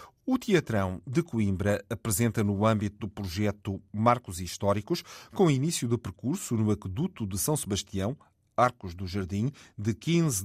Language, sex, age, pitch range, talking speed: Portuguese, male, 40-59, 100-120 Hz, 145 wpm